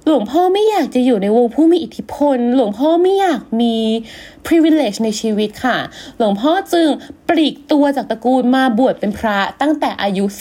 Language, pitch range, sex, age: Thai, 220-310 Hz, female, 20-39